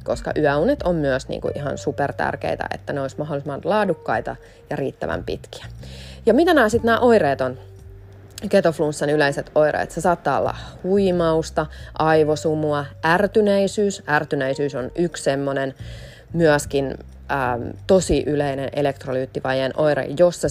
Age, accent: 30-49, native